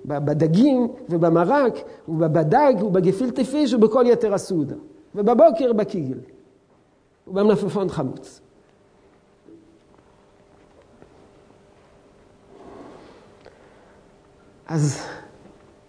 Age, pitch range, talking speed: 50-69, 195-285 Hz, 45 wpm